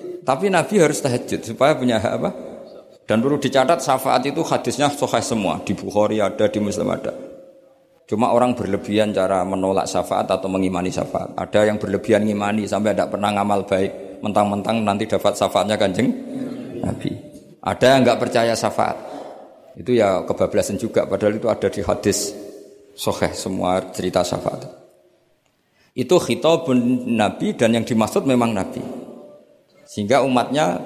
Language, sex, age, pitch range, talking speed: Malay, male, 50-69, 95-125 Hz, 145 wpm